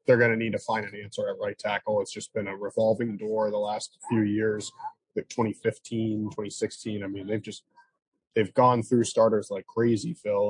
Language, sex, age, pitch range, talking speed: English, male, 20-39, 110-130 Hz, 200 wpm